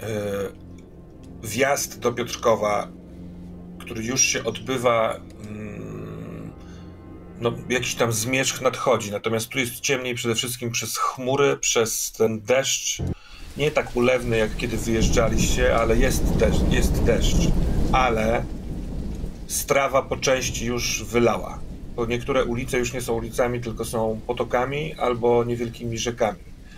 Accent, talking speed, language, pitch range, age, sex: native, 115 wpm, Polish, 110-120 Hz, 40-59, male